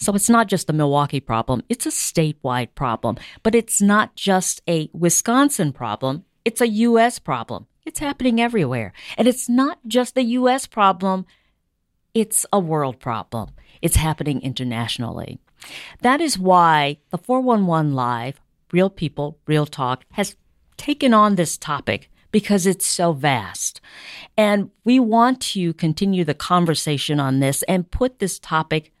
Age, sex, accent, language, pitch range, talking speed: 50-69, female, American, English, 150-210 Hz, 145 wpm